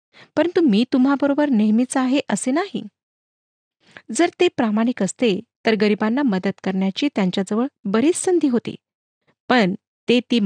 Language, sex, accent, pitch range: Marathi, female, native, 205-270 Hz